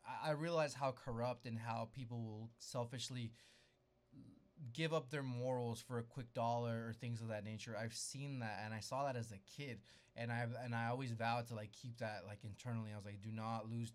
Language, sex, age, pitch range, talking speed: English, male, 20-39, 115-135 Hz, 215 wpm